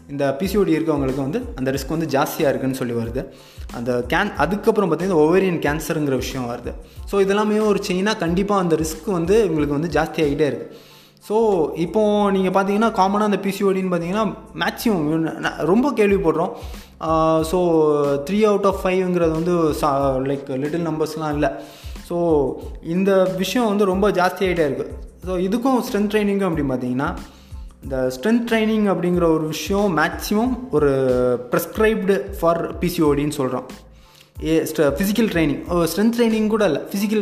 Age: 20-39